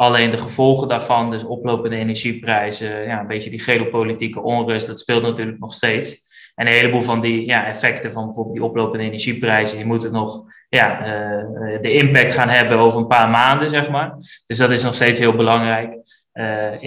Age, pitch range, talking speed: 20-39, 110-125 Hz, 190 wpm